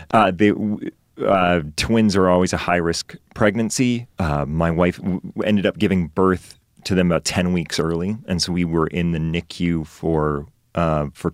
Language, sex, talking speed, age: English, male, 175 wpm, 30-49